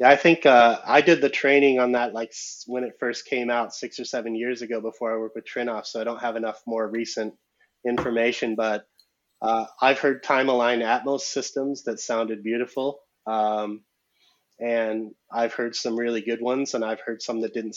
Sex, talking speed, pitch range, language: male, 200 wpm, 110-125 Hz, English